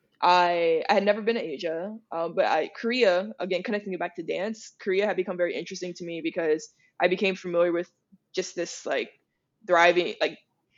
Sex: female